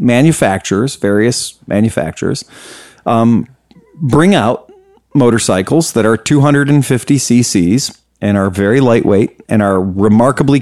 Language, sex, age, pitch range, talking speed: English, male, 40-59, 115-145 Hz, 100 wpm